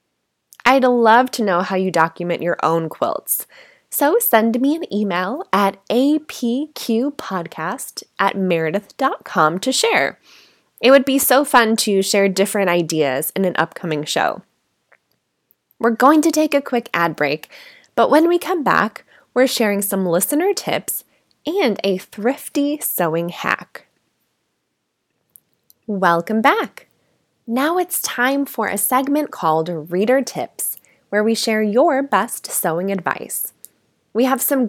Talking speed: 135 wpm